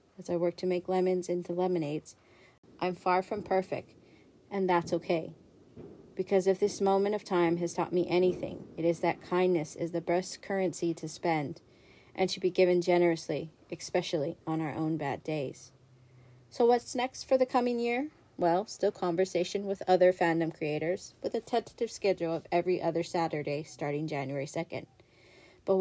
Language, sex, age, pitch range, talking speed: English, female, 40-59, 165-190 Hz, 165 wpm